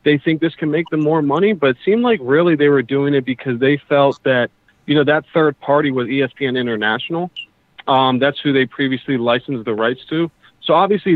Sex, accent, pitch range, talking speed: male, American, 125-150 Hz, 215 wpm